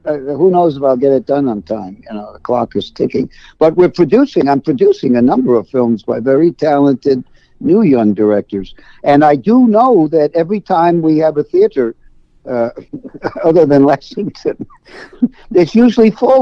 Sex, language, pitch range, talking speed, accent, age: male, English, 120-155 Hz, 180 wpm, American, 60-79